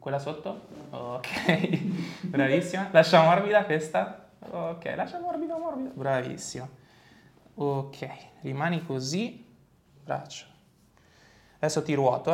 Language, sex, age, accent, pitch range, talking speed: Italian, male, 20-39, native, 140-195 Hz, 90 wpm